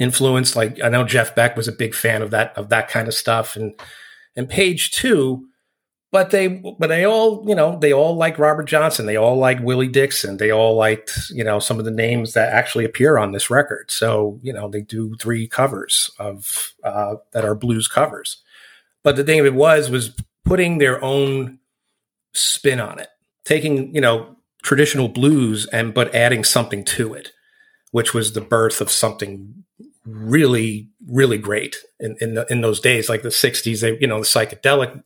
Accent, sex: American, male